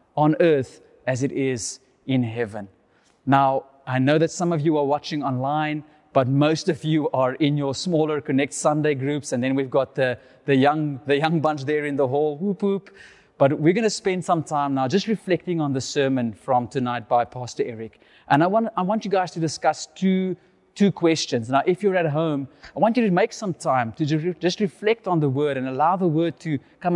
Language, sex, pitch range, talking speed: English, male, 140-180 Hz, 215 wpm